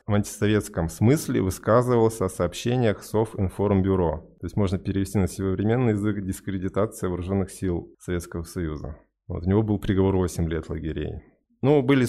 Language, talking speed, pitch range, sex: Russian, 145 wpm, 90-105 Hz, male